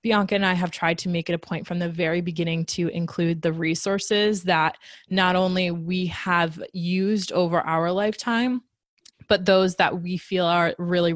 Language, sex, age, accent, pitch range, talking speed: English, female, 20-39, American, 170-190 Hz, 185 wpm